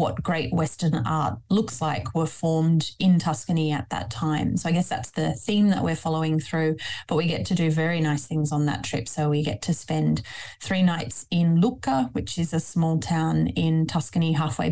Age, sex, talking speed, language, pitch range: 30-49, female, 210 wpm, English, 155-170 Hz